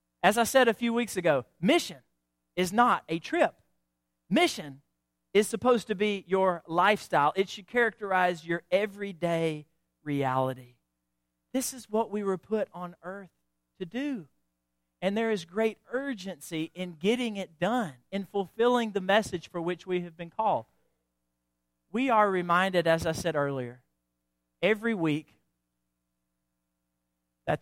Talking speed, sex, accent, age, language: 140 wpm, male, American, 40-59, English